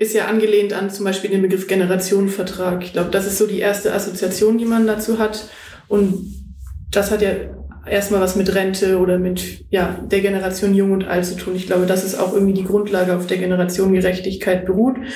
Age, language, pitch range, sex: 20-39, German, 190-215 Hz, female